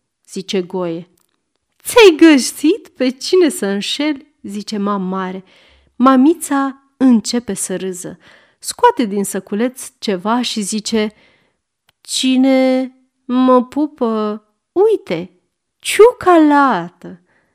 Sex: female